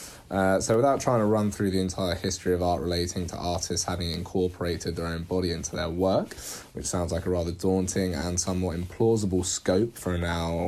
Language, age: English, 20-39